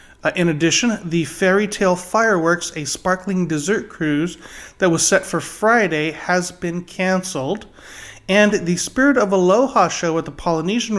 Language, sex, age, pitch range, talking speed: English, male, 30-49, 155-190 Hz, 155 wpm